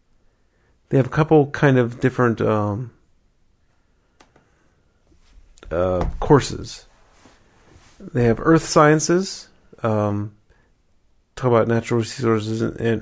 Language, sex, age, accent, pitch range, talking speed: English, male, 30-49, American, 110-130 Hz, 90 wpm